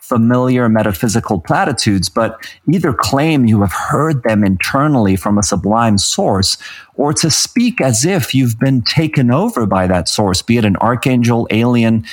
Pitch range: 105-130 Hz